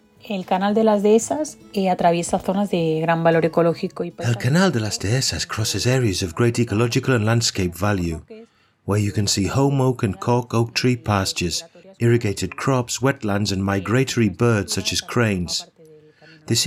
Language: Spanish